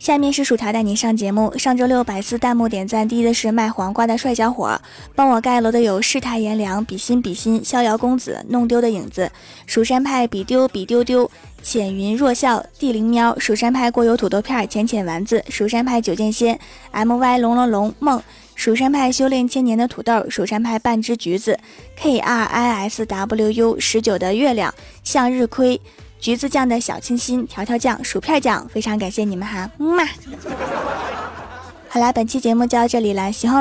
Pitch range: 210-245 Hz